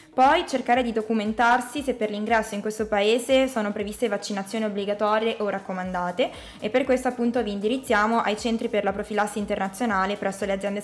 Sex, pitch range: female, 200-230 Hz